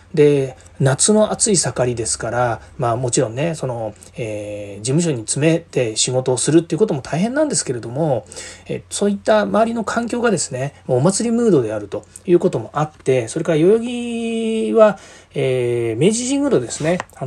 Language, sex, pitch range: Japanese, male, 125-205 Hz